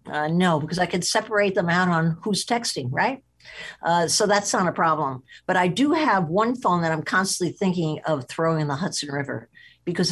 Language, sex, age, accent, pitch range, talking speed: English, female, 50-69, American, 155-205 Hz, 210 wpm